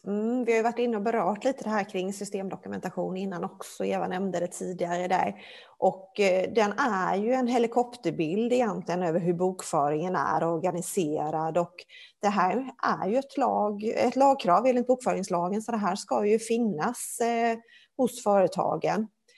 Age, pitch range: 30-49, 175-230 Hz